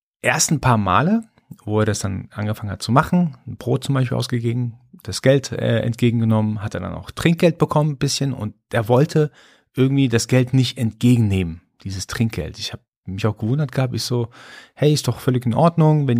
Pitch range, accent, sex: 105-135 Hz, German, male